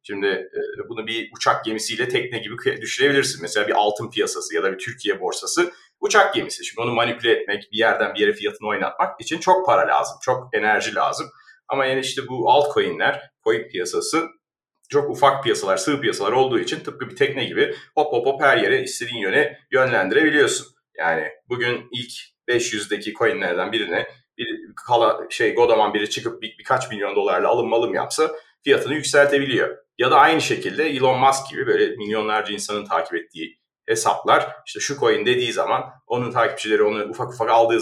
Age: 40-59